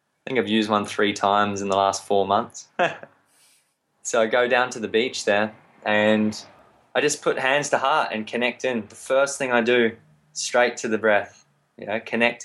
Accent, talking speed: Australian, 200 wpm